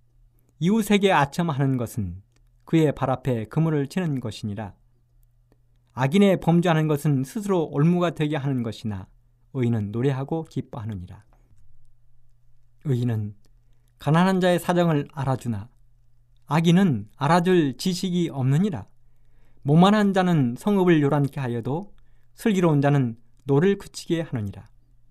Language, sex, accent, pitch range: Korean, male, native, 120-165 Hz